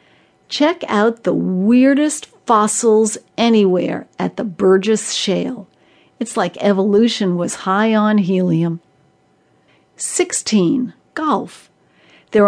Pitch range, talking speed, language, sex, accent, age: 190-235 Hz, 95 wpm, English, female, American, 60-79